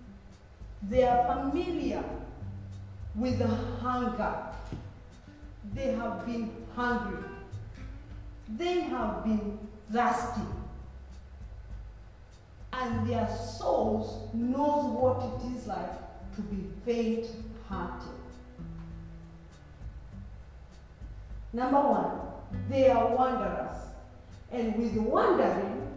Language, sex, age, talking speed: English, female, 40-59, 75 wpm